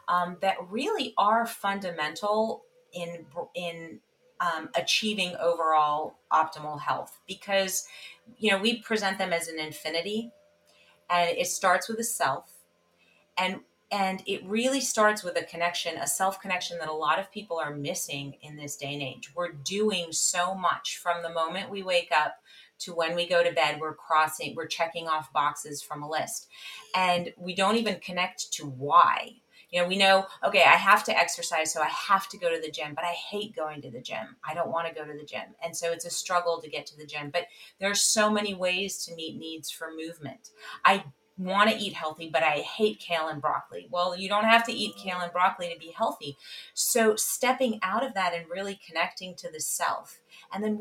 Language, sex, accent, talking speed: English, female, American, 200 wpm